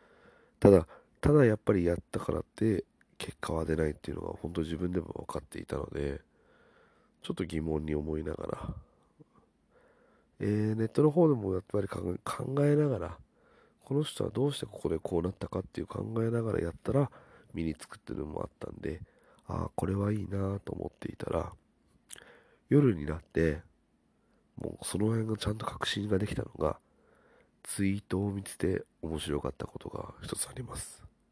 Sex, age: male, 40-59